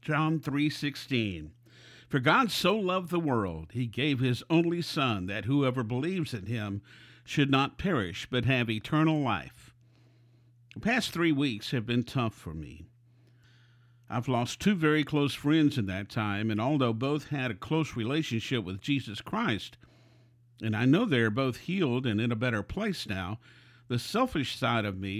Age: 50-69